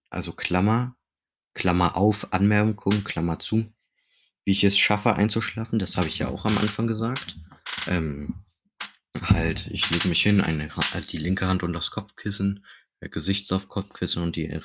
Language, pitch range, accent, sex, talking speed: German, 85-100 Hz, German, male, 170 wpm